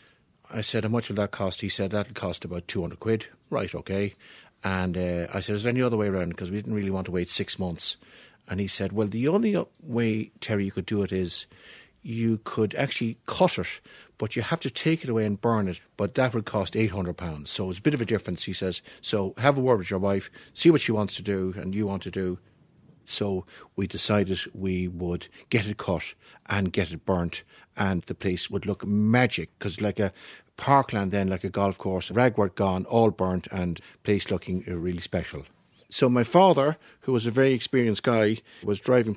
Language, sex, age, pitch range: English, male, 60-79, 95-120 Hz